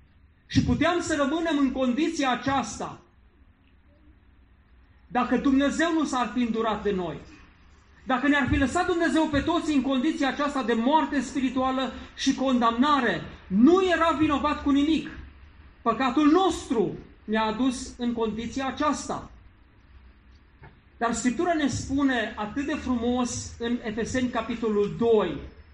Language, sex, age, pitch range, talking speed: Romanian, male, 40-59, 200-280 Hz, 125 wpm